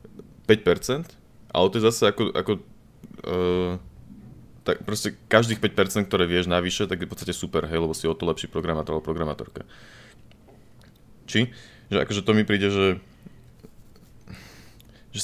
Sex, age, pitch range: male, 20-39, 85-110 Hz